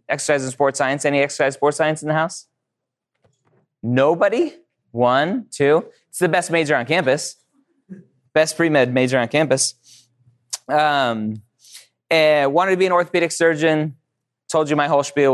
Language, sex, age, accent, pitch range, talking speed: English, male, 20-39, American, 125-150 Hz, 150 wpm